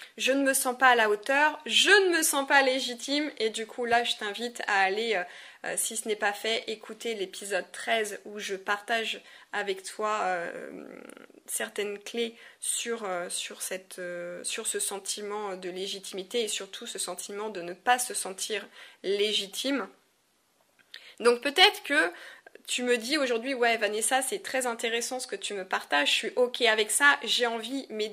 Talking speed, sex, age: 170 wpm, female, 20-39